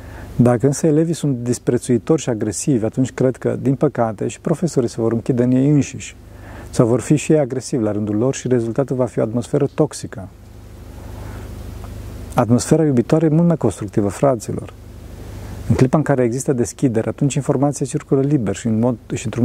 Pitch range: 100-140 Hz